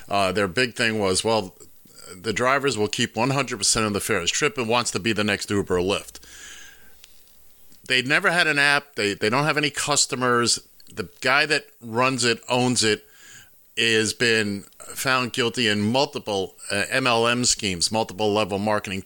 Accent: American